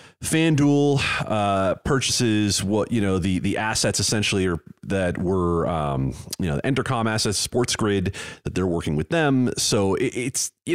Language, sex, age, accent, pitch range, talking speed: English, male, 30-49, American, 95-120 Hz, 165 wpm